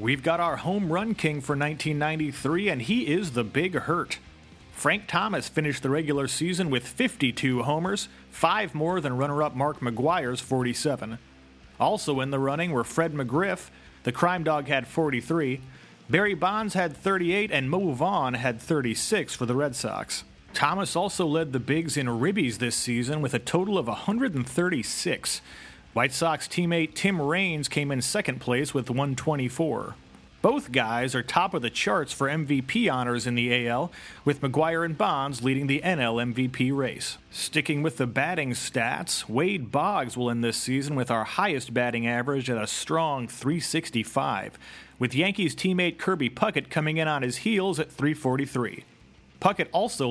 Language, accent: English, American